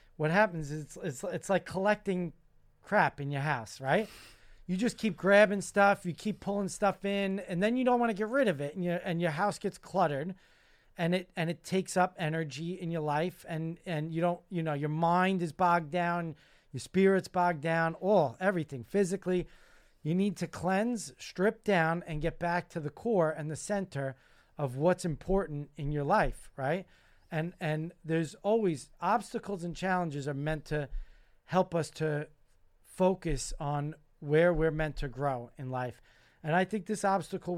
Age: 40-59